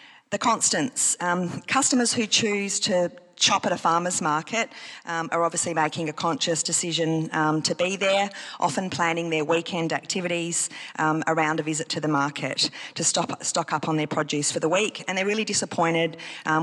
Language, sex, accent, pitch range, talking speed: English, female, Australian, 155-190 Hz, 180 wpm